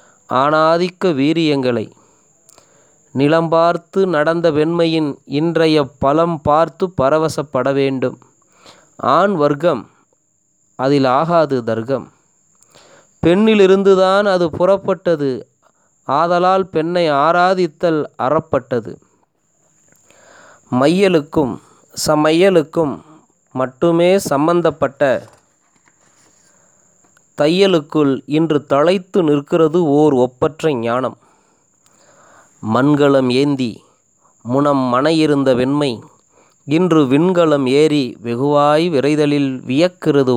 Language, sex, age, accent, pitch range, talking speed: Tamil, male, 20-39, native, 140-170 Hz, 65 wpm